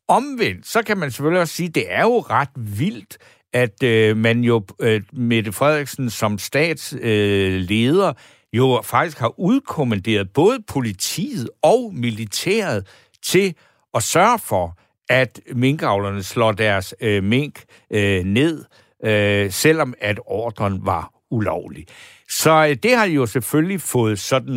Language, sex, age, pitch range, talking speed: Danish, male, 60-79, 110-150 Hz, 140 wpm